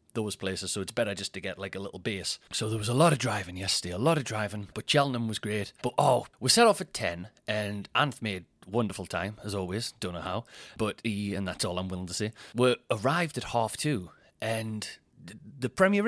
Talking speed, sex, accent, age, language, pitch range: 235 wpm, male, British, 30-49, English, 105-155 Hz